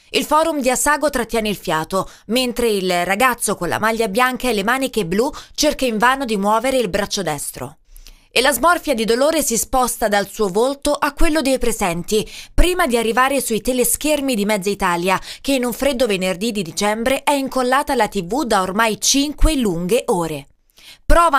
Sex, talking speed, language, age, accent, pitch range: female, 180 wpm, Italian, 20-39, native, 205-275 Hz